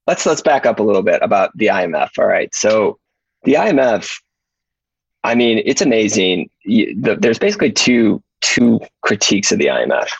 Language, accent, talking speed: English, American, 170 wpm